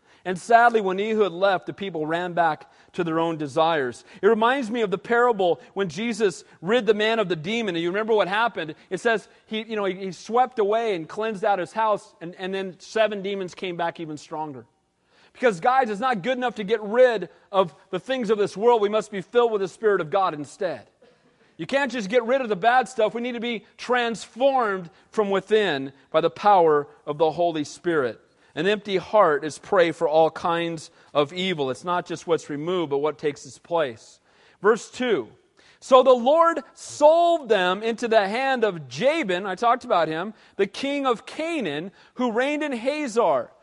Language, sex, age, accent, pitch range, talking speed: English, male, 40-59, American, 175-245 Hz, 200 wpm